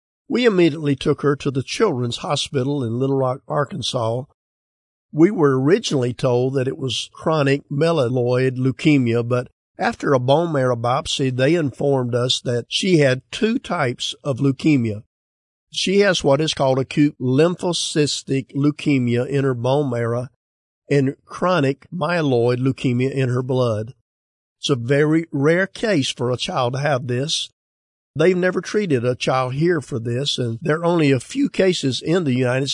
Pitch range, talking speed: 125-155 Hz, 160 wpm